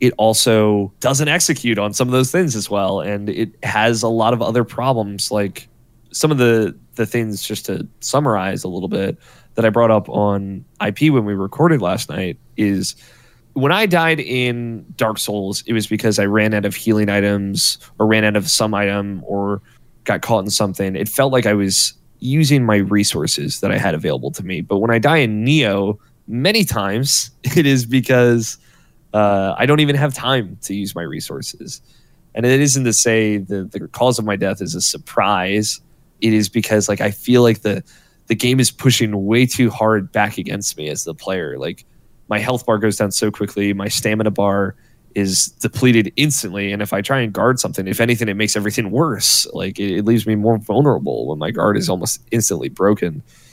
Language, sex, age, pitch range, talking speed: English, male, 20-39, 100-125 Hz, 200 wpm